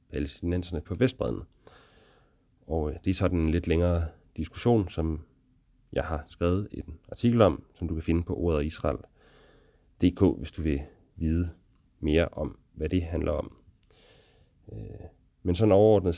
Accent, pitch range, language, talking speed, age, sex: Danish, 80-100 Hz, English, 145 wpm, 30-49, male